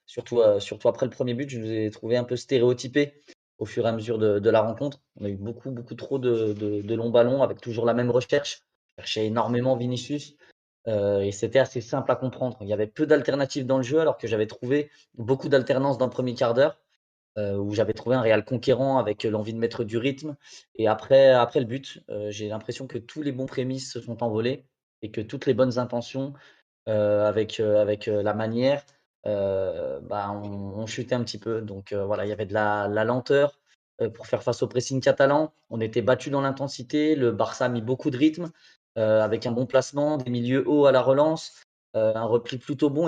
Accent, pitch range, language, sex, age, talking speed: French, 110-135 Hz, French, male, 20-39, 225 wpm